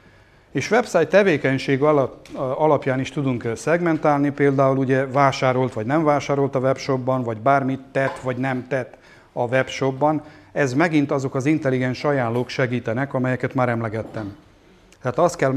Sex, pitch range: male, 120-145 Hz